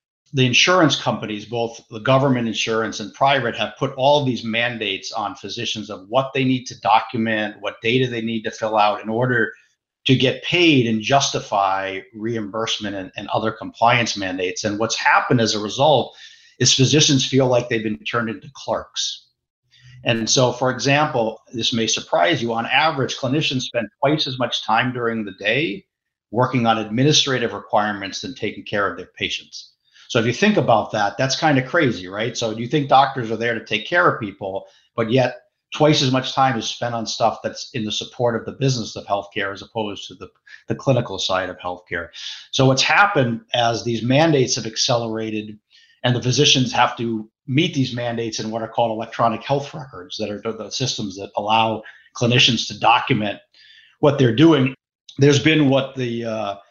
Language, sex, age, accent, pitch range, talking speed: English, male, 50-69, American, 110-130 Hz, 185 wpm